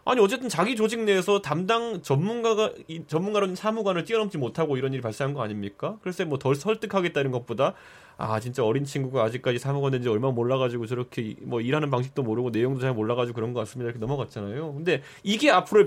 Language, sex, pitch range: Korean, male, 135-205 Hz